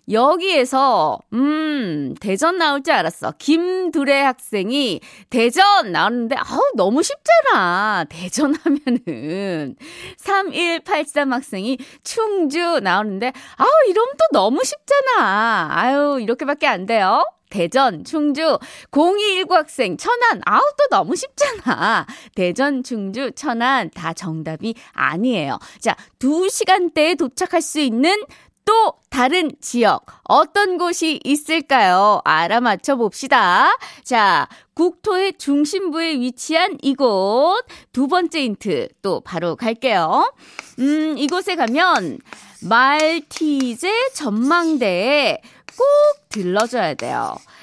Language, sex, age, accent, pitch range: Korean, female, 20-39, native, 235-345 Hz